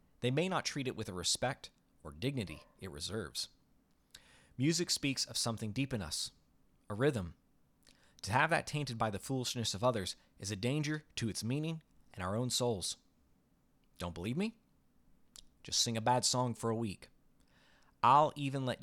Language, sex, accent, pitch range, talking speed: English, male, American, 100-140 Hz, 170 wpm